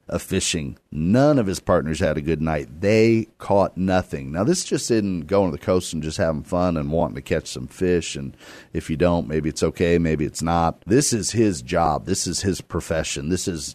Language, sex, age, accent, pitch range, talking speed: English, male, 50-69, American, 85-115 Hz, 225 wpm